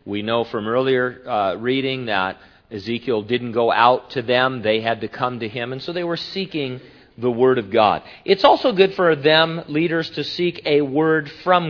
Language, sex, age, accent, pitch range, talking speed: English, male, 50-69, American, 115-160 Hz, 200 wpm